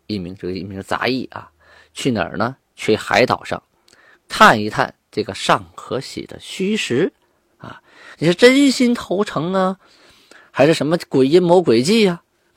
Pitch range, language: 115-195 Hz, Chinese